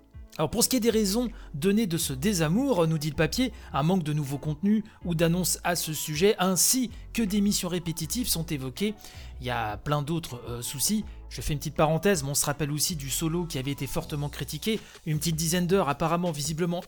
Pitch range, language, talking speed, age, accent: 150-200 Hz, French, 220 wpm, 30-49, French